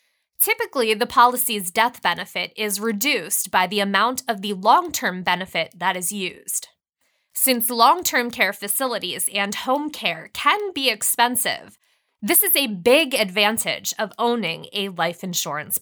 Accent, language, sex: American, English, female